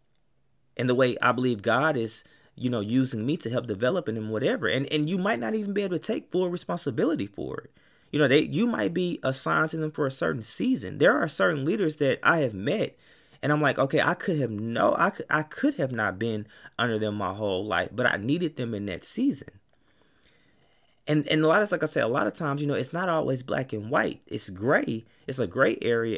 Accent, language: American, English